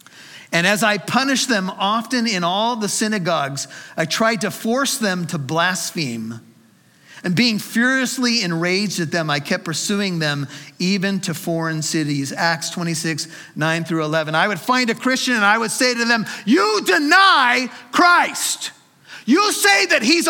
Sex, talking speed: male, 160 wpm